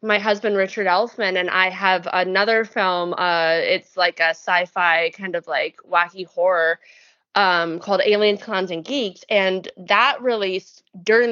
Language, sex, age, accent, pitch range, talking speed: English, female, 20-39, American, 180-205 Hz, 155 wpm